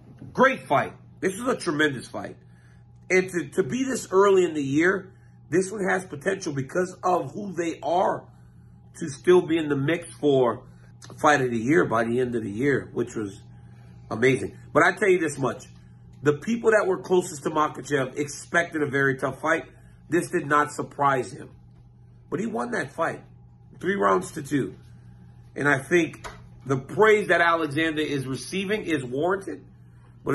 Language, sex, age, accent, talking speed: English, male, 40-59, American, 175 wpm